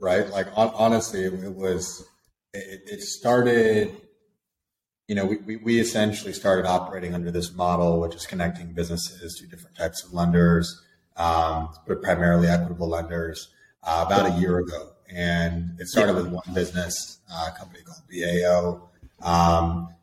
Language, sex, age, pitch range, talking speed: English, male, 30-49, 85-95 Hz, 155 wpm